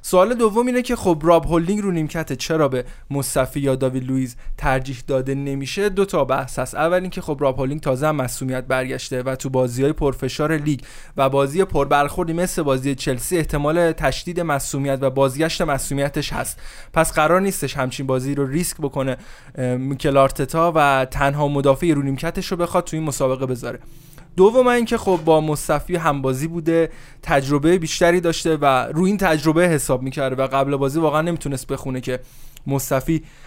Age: 20-39